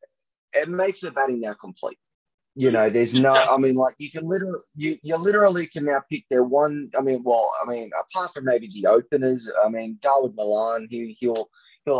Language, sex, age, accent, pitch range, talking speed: English, male, 20-39, Australian, 110-145 Hz, 205 wpm